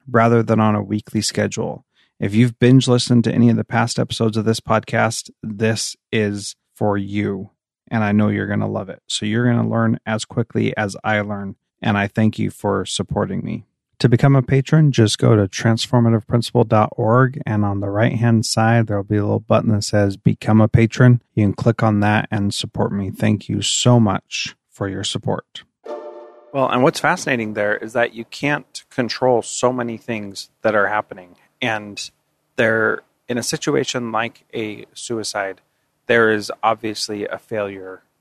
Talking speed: 180 wpm